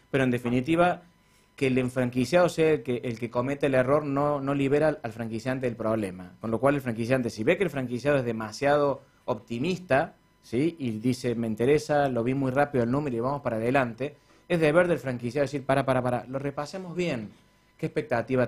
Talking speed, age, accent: 200 wpm, 30-49, Argentinian